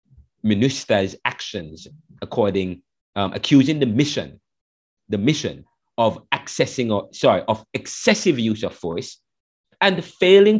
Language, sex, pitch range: English, male, 110-180 Hz